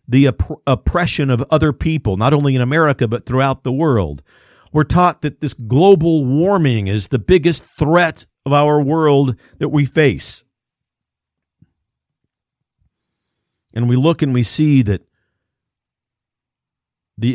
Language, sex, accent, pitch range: English, male, American, 110-150 Hz